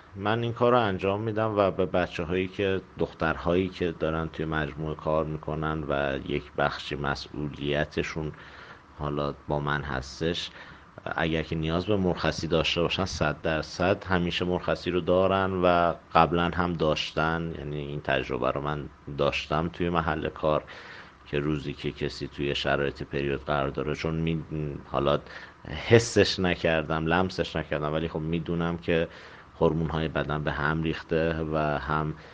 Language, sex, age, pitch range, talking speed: Persian, male, 50-69, 75-85 Hz, 145 wpm